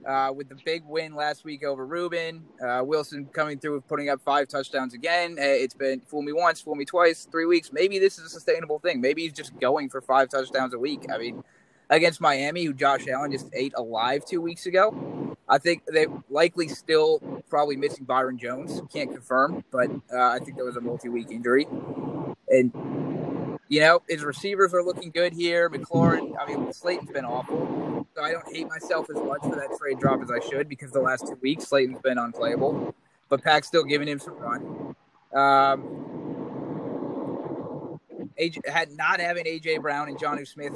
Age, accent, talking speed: 20-39, American, 190 wpm